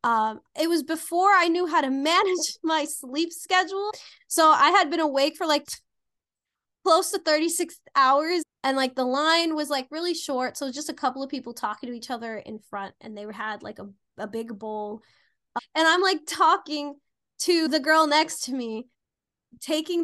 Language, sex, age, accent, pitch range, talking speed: English, female, 20-39, American, 270-350 Hz, 190 wpm